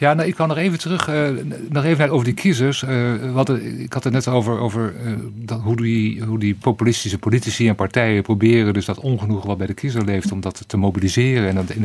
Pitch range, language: 105-135 Hz, Dutch